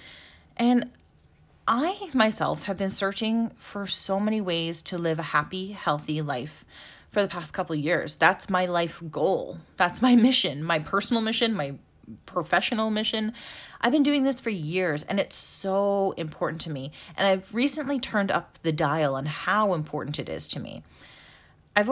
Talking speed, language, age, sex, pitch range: 170 wpm, English, 30-49, female, 170-220 Hz